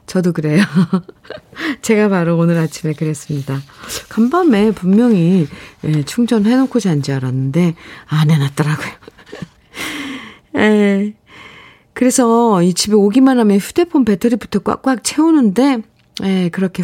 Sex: female